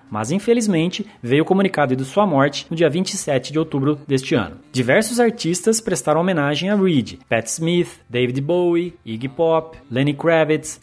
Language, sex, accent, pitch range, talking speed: Portuguese, male, Brazilian, 135-205 Hz, 160 wpm